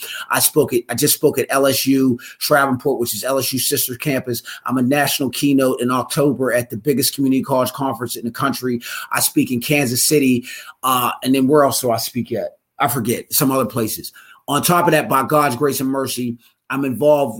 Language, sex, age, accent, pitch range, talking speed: English, male, 30-49, American, 130-155 Hz, 205 wpm